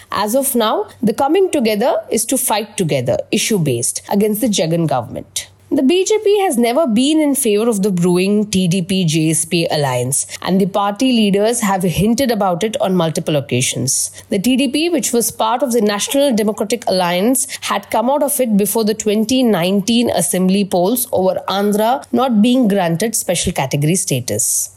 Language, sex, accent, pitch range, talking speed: English, female, Indian, 180-245 Hz, 160 wpm